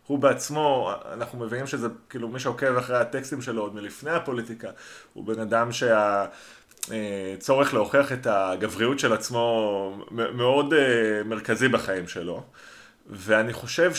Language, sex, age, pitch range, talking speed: Hebrew, male, 30-49, 110-140 Hz, 125 wpm